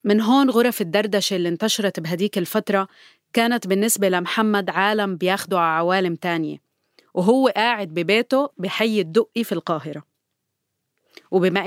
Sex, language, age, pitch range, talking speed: female, Arabic, 30-49, 185-225 Hz, 125 wpm